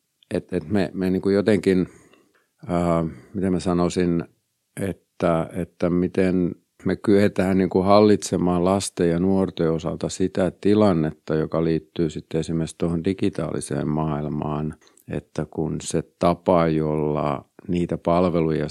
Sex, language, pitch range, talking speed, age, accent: male, Finnish, 75-85 Hz, 95 wpm, 50-69, native